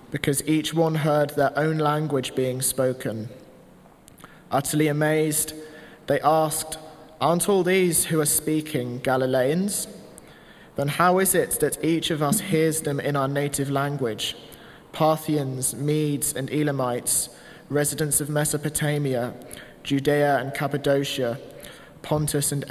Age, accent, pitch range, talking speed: 20-39, British, 130-155 Hz, 120 wpm